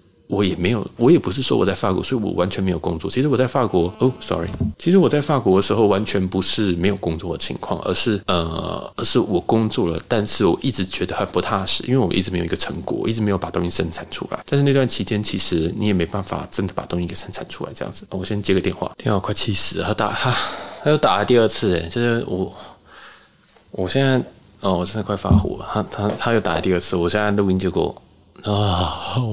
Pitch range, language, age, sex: 90-110 Hz, Chinese, 20-39, male